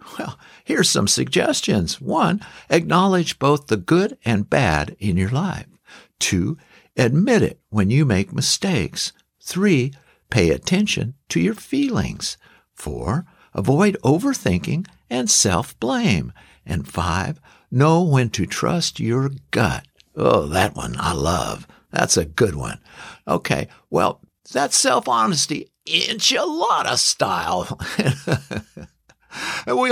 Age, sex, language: 60-79, male, English